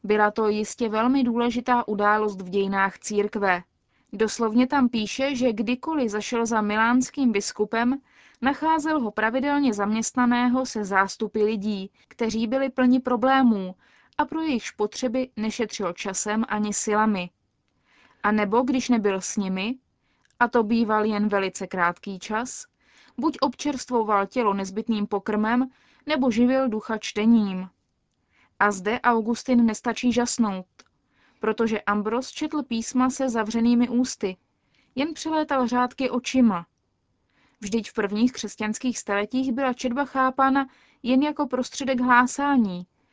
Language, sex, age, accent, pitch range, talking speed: Czech, female, 20-39, native, 210-255 Hz, 120 wpm